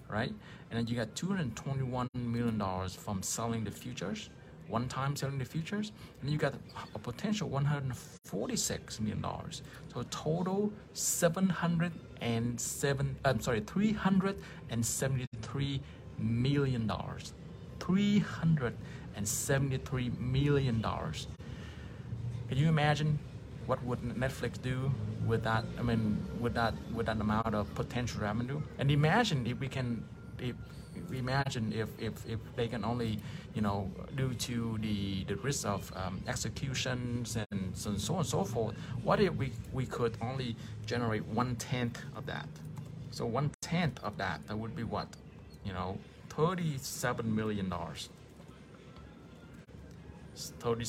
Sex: male